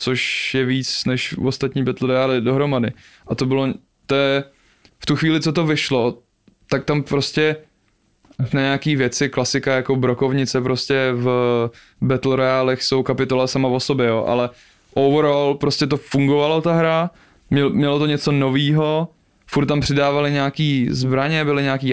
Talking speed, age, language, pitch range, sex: 150 wpm, 20-39, Czech, 130-140 Hz, male